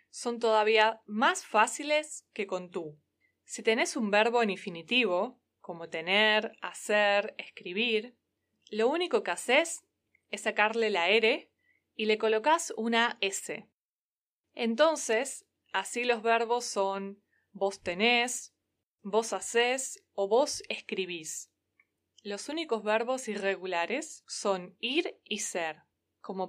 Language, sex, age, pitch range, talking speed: Spanish, female, 20-39, 195-240 Hz, 115 wpm